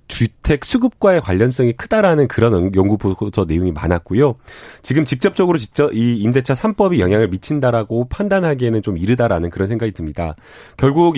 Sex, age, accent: male, 30-49, native